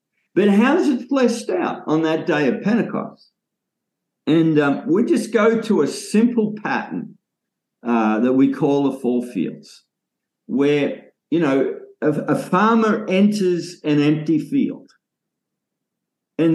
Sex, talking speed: male, 140 wpm